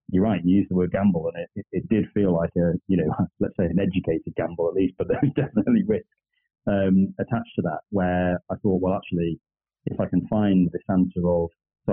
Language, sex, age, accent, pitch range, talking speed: English, male, 30-49, British, 85-95 Hz, 230 wpm